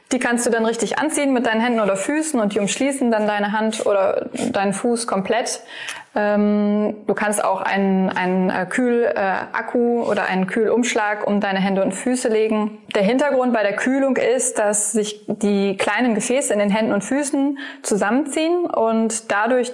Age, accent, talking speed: 20-39, German, 165 wpm